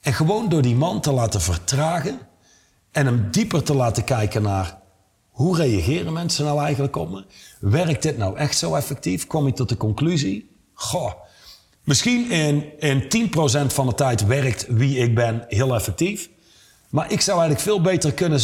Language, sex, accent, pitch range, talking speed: Dutch, male, Dutch, 120-165 Hz, 175 wpm